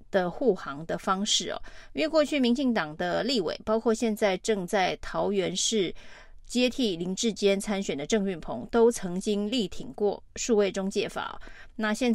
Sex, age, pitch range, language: female, 30-49, 190-225 Hz, Chinese